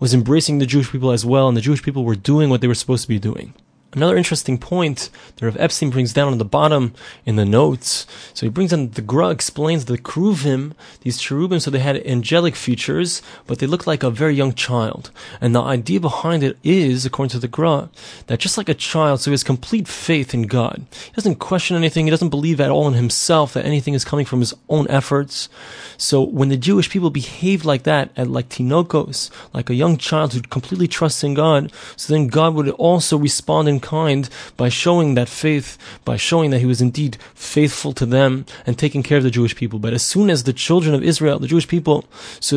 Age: 30-49